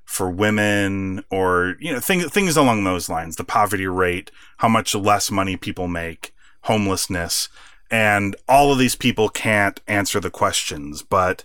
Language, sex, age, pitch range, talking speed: English, male, 30-49, 95-115 Hz, 150 wpm